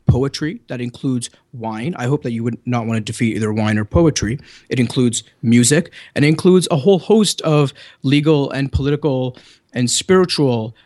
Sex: male